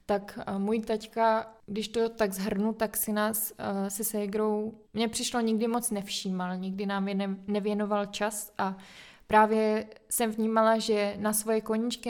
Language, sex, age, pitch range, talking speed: Czech, female, 20-39, 200-225 Hz, 155 wpm